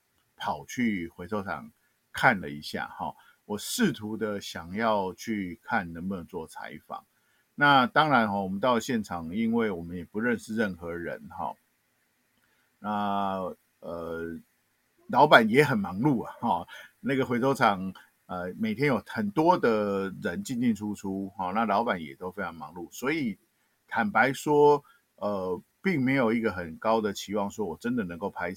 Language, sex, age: Chinese, male, 50-69